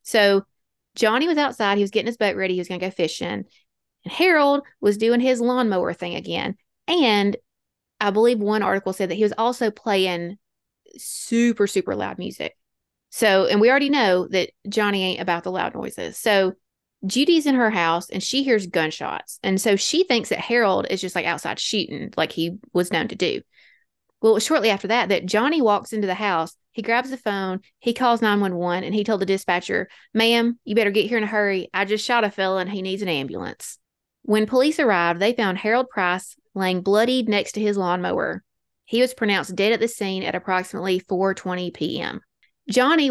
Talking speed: 200 wpm